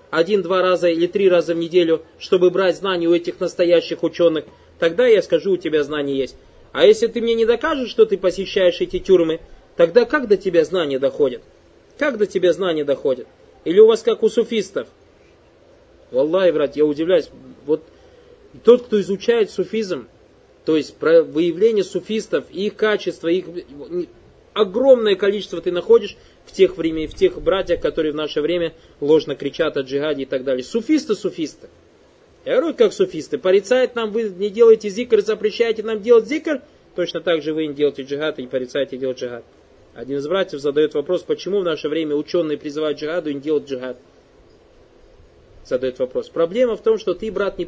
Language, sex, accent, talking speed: Russian, male, native, 175 wpm